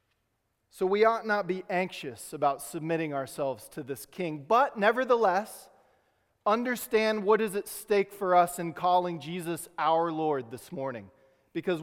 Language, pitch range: English, 130-180 Hz